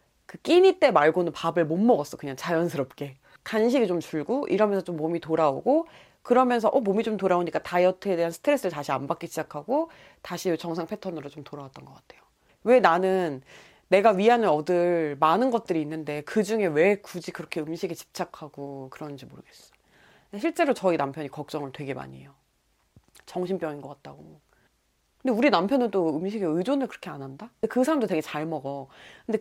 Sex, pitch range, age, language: female, 155-220 Hz, 30-49, Korean